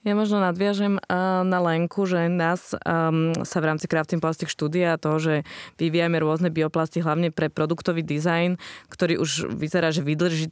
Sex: female